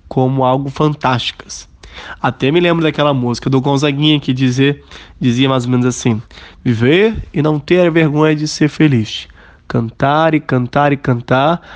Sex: male